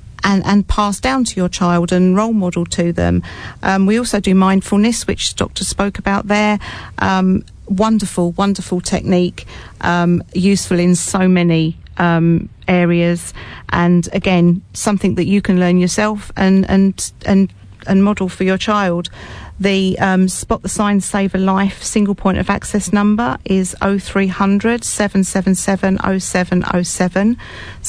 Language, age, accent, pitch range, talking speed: English, 40-59, British, 180-200 Hz, 140 wpm